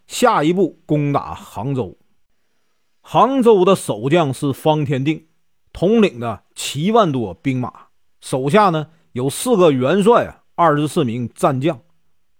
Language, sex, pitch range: Chinese, male, 130-200 Hz